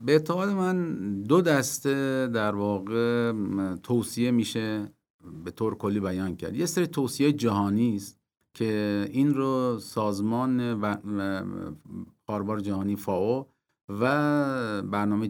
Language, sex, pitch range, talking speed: Persian, male, 100-130 Hz, 110 wpm